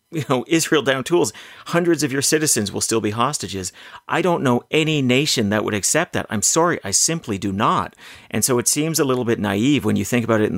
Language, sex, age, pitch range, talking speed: English, male, 30-49, 105-155 Hz, 240 wpm